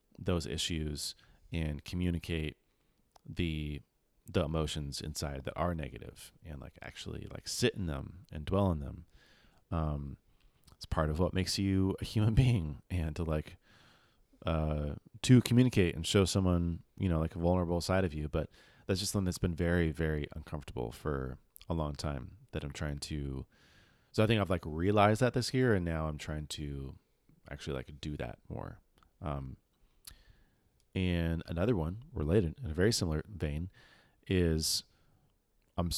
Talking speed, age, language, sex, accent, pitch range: 160 wpm, 30-49, English, male, American, 75-100 Hz